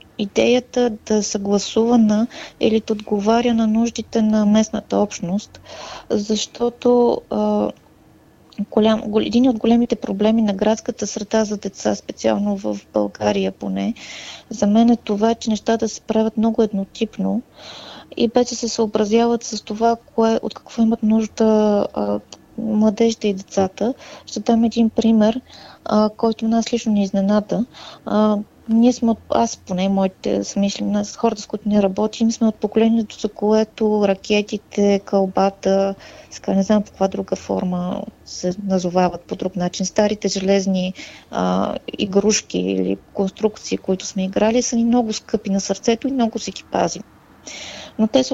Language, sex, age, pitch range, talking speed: Bulgarian, female, 20-39, 195-230 Hz, 145 wpm